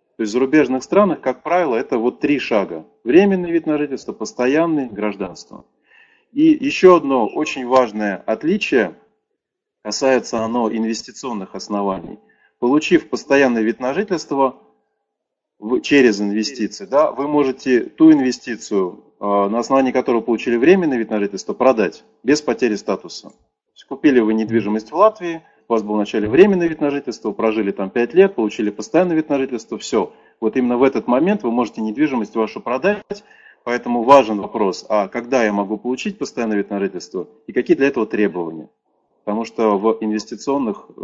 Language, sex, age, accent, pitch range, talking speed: Russian, male, 30-49, native, 105-140 Hz, 150 wpm